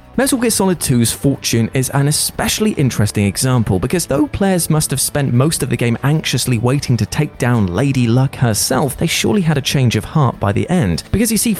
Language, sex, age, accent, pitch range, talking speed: English, male, 30-49, British, 120-165 Hz, 210 wpm